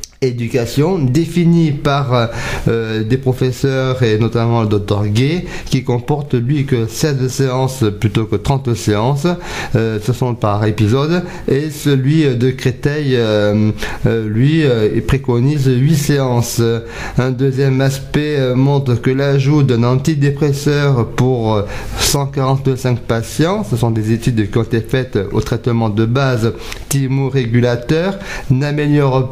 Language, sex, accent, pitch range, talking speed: French, male, French, 120-145 Hz, 130 wpm